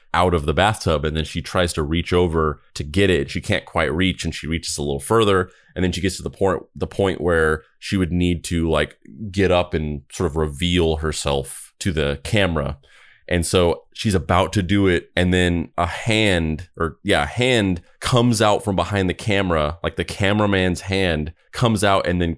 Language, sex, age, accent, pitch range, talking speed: English, male, 30-49, American, 80-95 Hz, 205 wpm